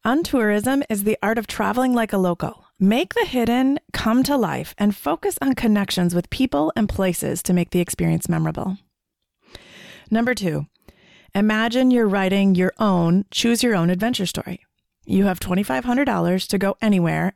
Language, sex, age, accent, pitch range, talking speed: English, female, 30-49, American, 175-220 Hz, 150 wpm